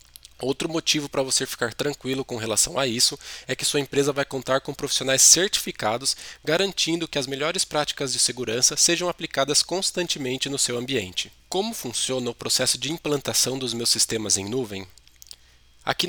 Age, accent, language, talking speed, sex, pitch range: 20-39, Brazilian, Portuguese, 165 wpm, male, 115-145 Hz